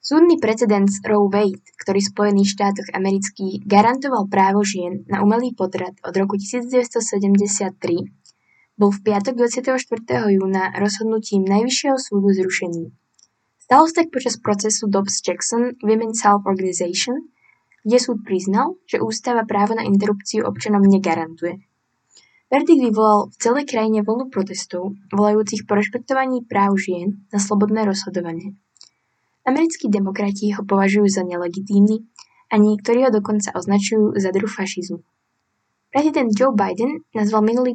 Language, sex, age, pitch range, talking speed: Slovak, female, 10-29, 195-235 Hz, 130 wpm